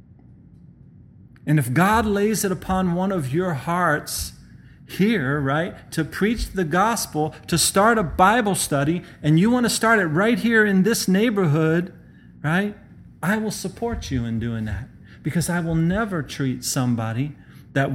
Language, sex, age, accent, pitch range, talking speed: English, male, 40-59, American, 125-185 Hz, 155 wpm